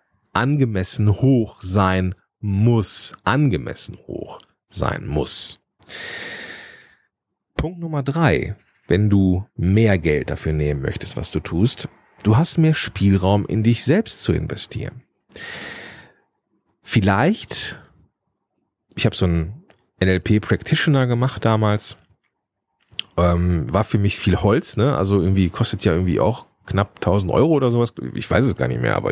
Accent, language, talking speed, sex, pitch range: German, German, 130 wpm, male, 95-125 Hz